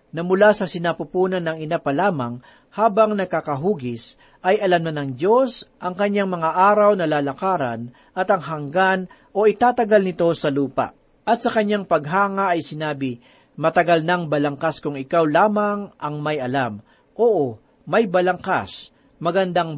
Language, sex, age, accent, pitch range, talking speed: Filipino, male, 40-59, native, 150-205 Hz, 145 wpm